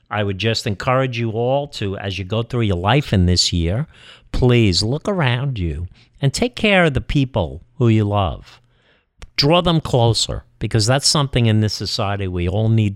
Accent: American